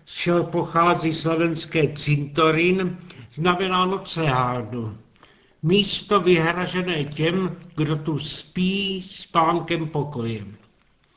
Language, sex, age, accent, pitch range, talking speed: Czech, male, 60-79, native, 150-180 Hz, 80 wpm